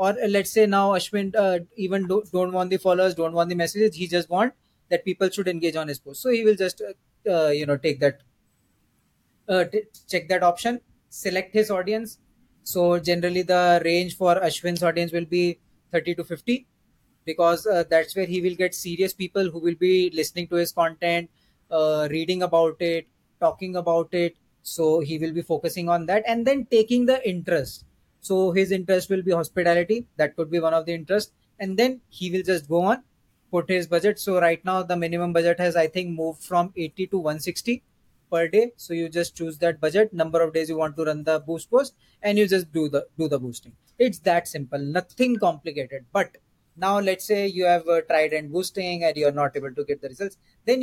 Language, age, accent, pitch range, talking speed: Hindi, 20-39, native, 165-190 Hz, 210 wpm